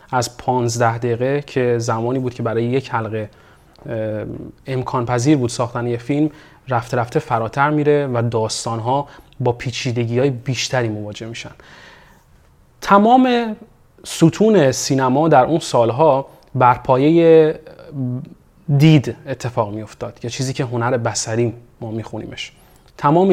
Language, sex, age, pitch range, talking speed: Persian, male, 30-49, 120-145 Hz, 125 wpm